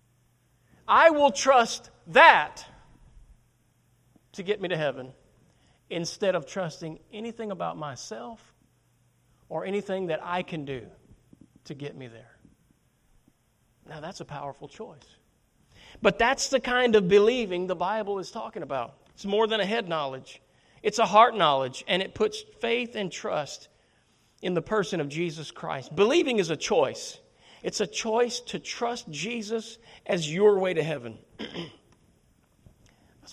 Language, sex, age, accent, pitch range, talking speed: English, male, 40-59, American, 145-225 Hz, 140 wpm